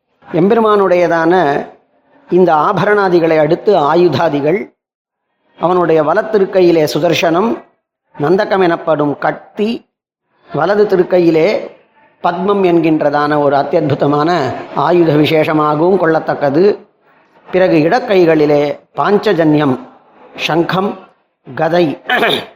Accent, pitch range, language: native, 155-195 Hz, Tamil